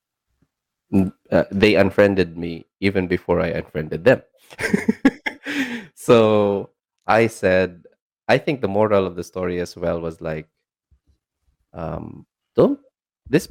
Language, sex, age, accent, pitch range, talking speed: English, male, 20-39, Filipino, 90-135 Hz, 115 wpm